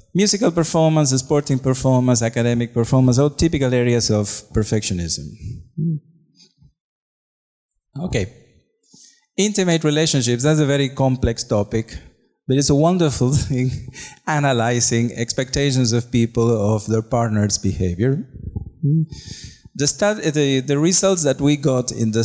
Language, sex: Polish, male